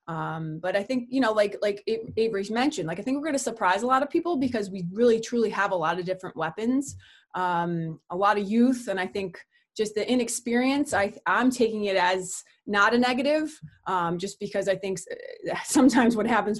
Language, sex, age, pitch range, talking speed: English, female, 20-39, 180-215 Hz, 210 wpm